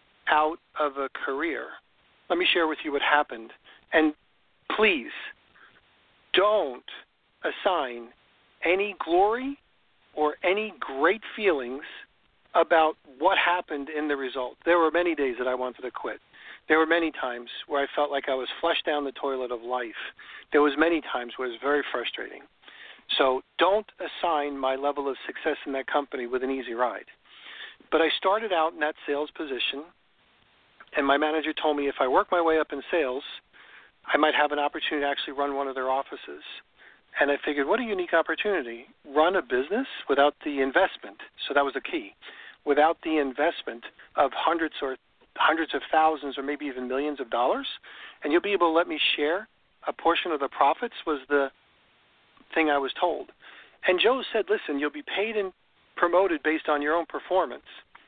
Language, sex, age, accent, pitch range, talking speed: English, male, 40-59, American, 140-165 Hz, 180 wpm